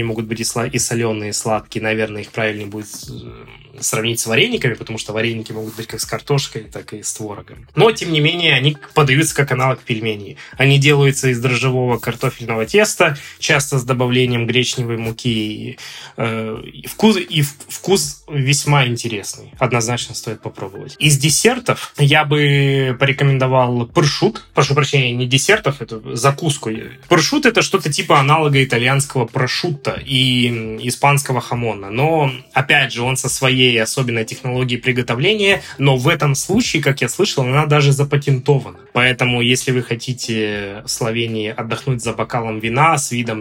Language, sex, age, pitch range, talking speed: Russian, male, 20-39, 115-145 Hz, 150 wpm